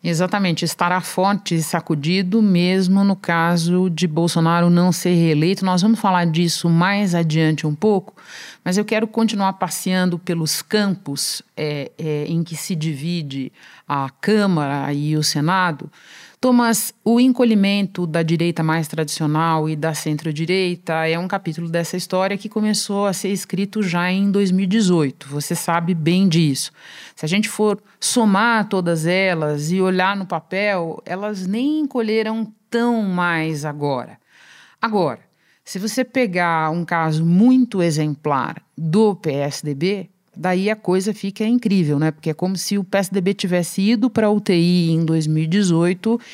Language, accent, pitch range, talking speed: Portuguese, Brazilian, 160-205 Hz, 140 wpm